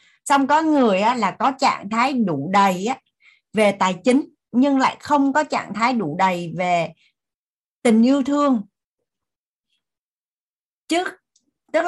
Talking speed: 125 wpm